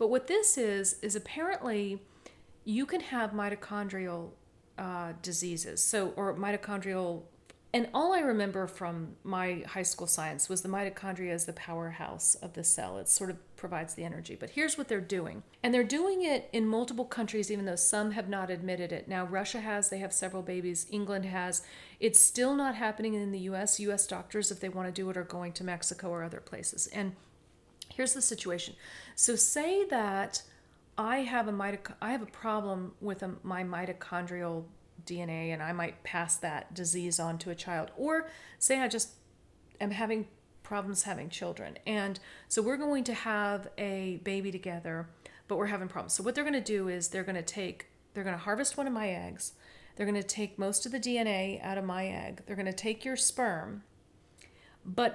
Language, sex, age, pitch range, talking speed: English, female, 40-59, 180-225 Hz, 185 wpm